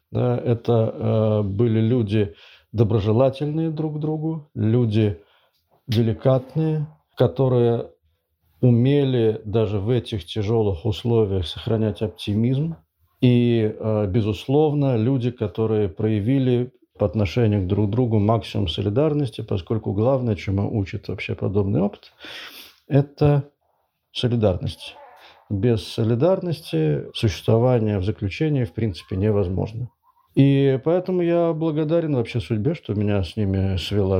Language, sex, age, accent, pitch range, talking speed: Russian, male, 50-69, native, 105-130 Hz, 110 wpm